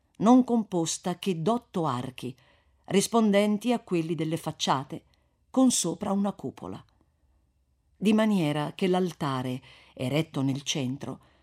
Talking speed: 110 wpm